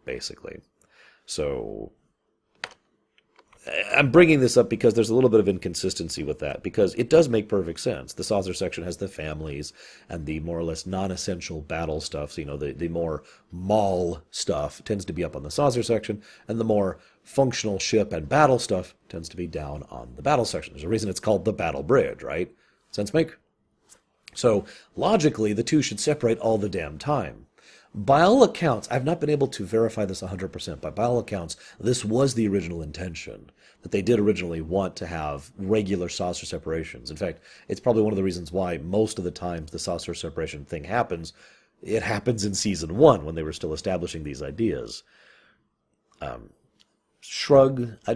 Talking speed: 190 wpm